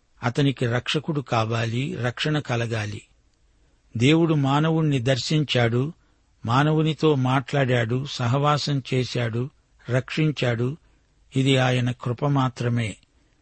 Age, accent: 60-79, native